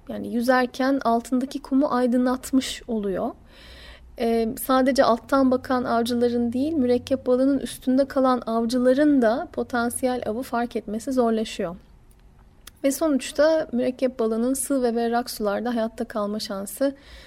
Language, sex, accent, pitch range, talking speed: Turkish, female, native, 230-275 Hz, 120 wpm